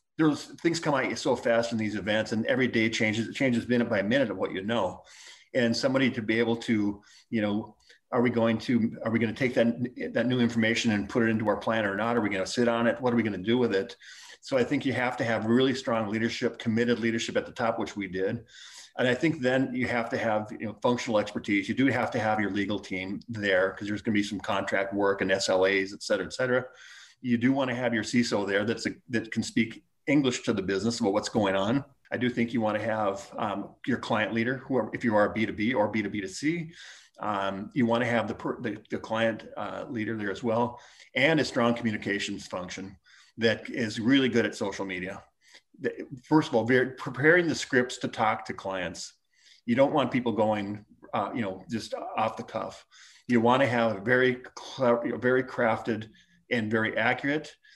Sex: male